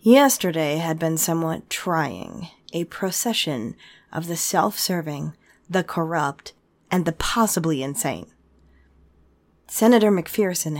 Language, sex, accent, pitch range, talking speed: English, female, American, 150-185 Hz, 100 wpm